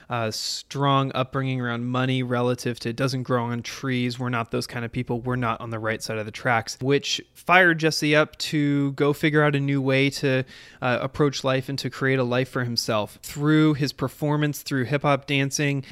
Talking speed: 210 wpm